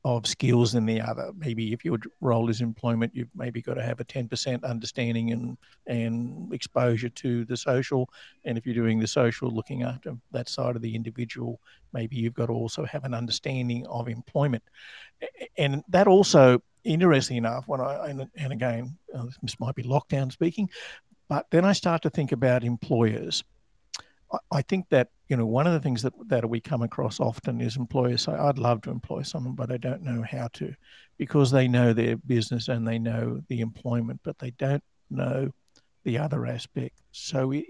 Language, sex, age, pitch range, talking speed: English, male, 50-69, 120-140 Hz, 190 wpm